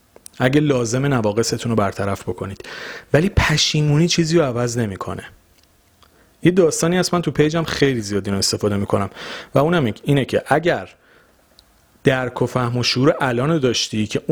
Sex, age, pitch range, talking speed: male, 40-59, 105-145 Hz, 145 wpm